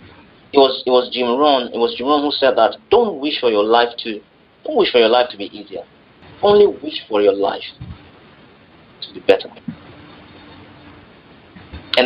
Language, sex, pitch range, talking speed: English, male, 110-170 Hz, 180 wpm